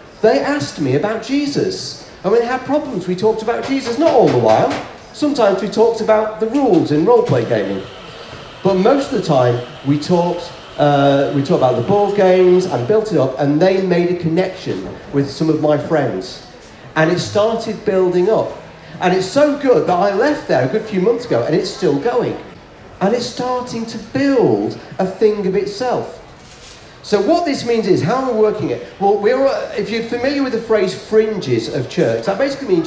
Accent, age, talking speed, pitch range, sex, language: British, 40-59, 200 wpm, 170-225 Hz, male, English